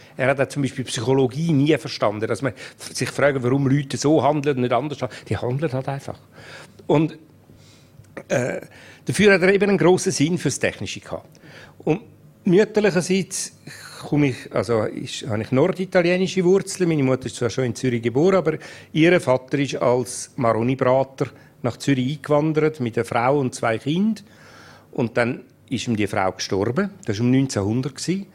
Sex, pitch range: male, 125-165 Hz